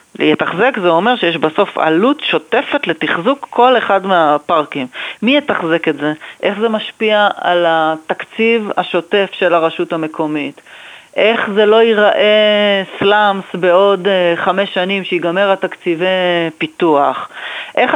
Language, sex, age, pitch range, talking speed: Hebrew, female, 30-49, 170-230 Hz, 120 wpm